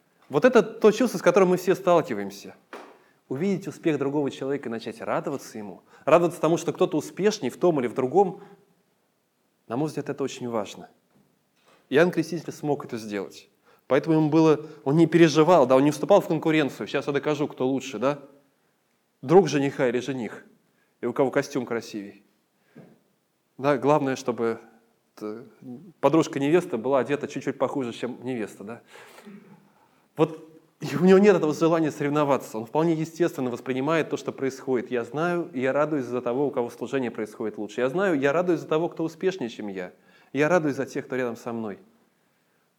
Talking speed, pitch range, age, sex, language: 170 wpm, 125-165 Hz, 20-39, male, Russian